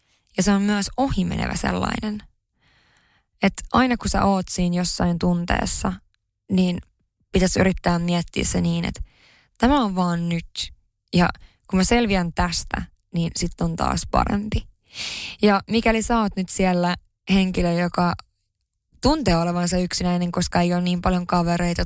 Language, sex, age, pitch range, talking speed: Finnish, female, 20-39, 170-195 Hz, 140 wpm